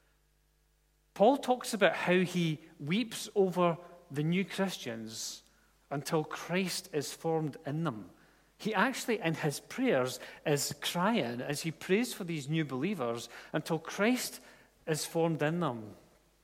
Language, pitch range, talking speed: English, 140-190 Hz, 130 wpm